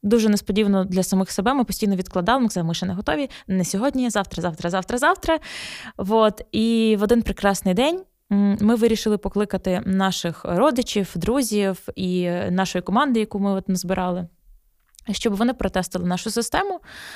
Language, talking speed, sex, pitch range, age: Ukrainian, 135 wpm, female, 185-250 Hz, 20-39